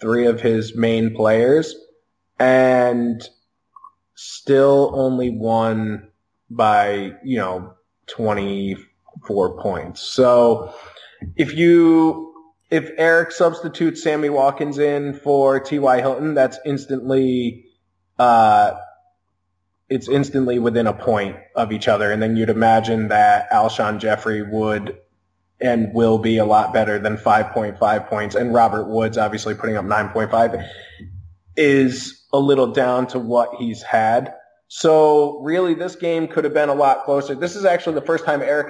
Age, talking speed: 20-39, 135 wpm